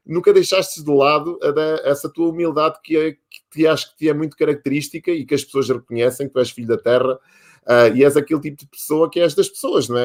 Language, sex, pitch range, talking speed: Portuguese, male, 125-160 Hz, 215 wpm